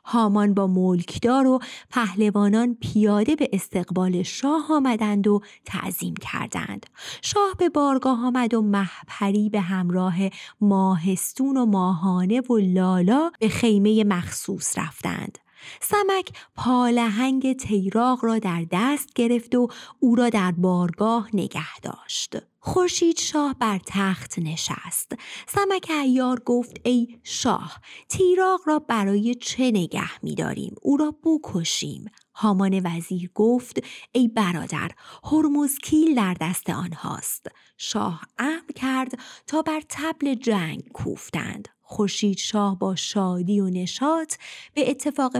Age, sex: 30-49, female